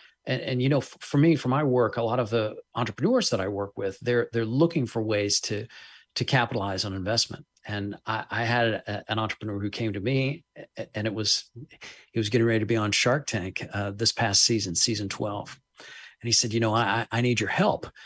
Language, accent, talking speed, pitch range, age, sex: English, American, 225 wpm, 110-140 Hz, 40-59, male